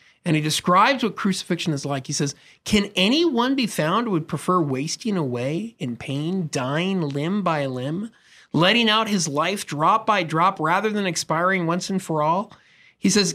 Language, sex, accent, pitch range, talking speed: English, male, American, 145-205 Hz, 180 wpm